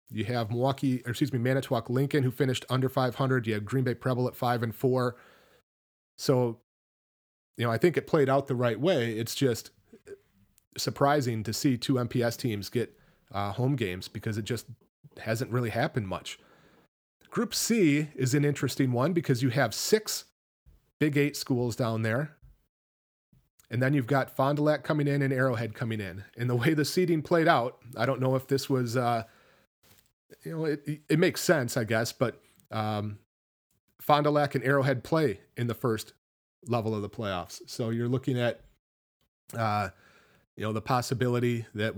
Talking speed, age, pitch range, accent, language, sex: 175 wpm, 30-49, 110-140 Hz, American, English, male